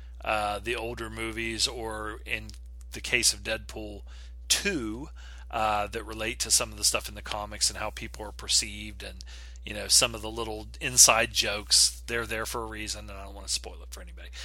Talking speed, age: 205 wpm, 40-59